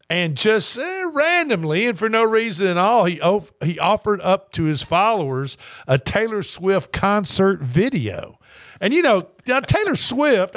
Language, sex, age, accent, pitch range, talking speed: English, male, 50-69, American, 140-210 Hz, 165 wpm